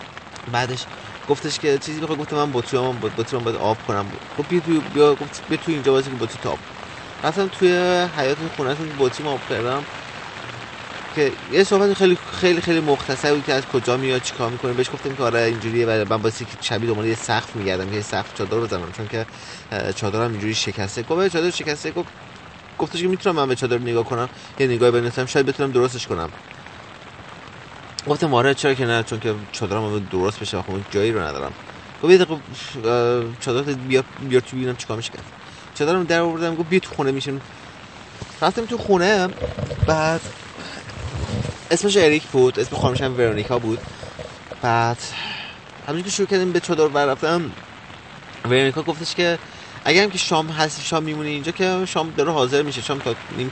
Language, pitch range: Persian, 115-155 Hz